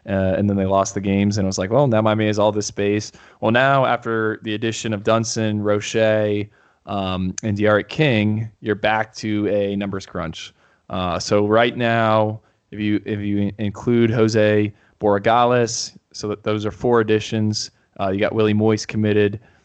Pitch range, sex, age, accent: 105-115 Hz, male, 20-39, American